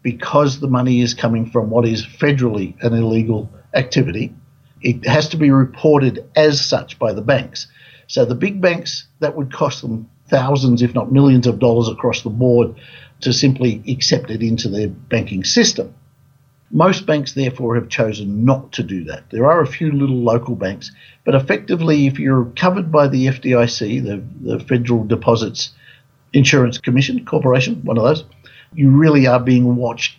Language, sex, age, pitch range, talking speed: English, male, 50-69, 115-135 Hz, 170 wpm